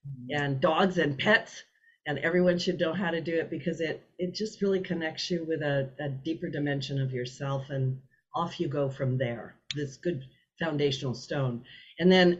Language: English